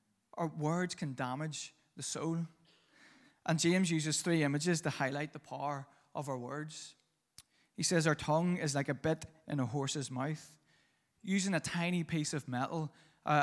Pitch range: 140-160 Hz